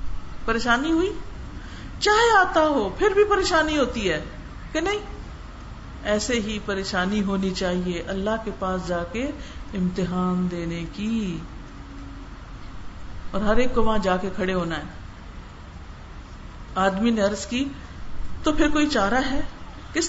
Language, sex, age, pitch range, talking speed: Urdu, female, 50-69, 185-280 Hz, 85 wpm